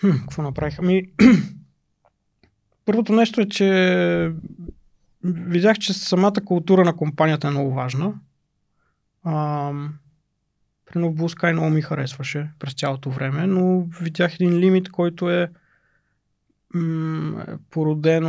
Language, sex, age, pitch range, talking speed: Bulgarian, male, 20-39, 135-170 Hz, 105 wpm